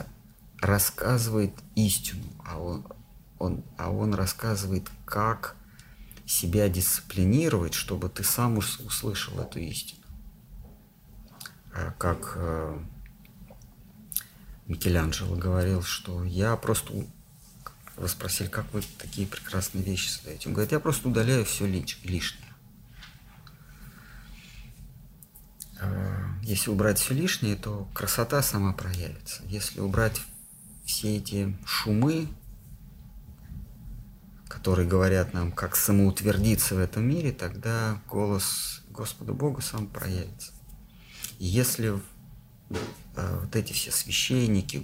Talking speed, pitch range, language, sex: 90 wpm, 95-110 Hz, Russian, male